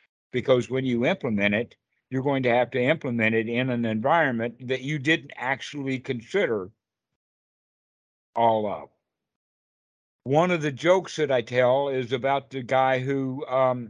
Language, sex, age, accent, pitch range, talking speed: English, male, 60-79, American, 125-155 Hz, 150 wpm